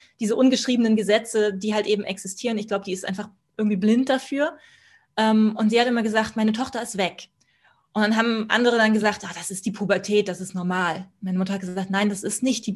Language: German